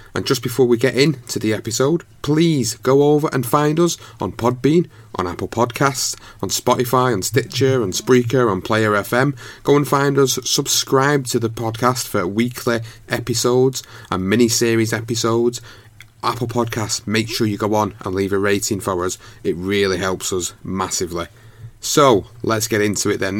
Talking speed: 170 wpm